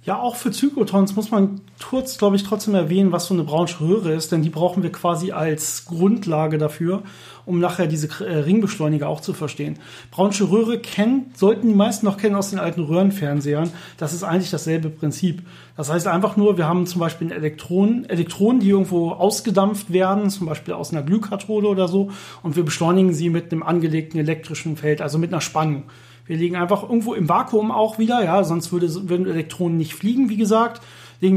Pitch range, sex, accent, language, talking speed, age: 160-200 Hz, male, German, German, 190 wpm, 40-59